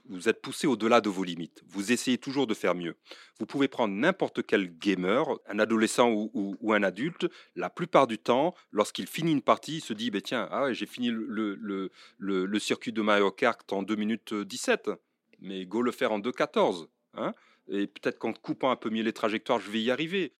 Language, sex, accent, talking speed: French, male, French, 225 wpm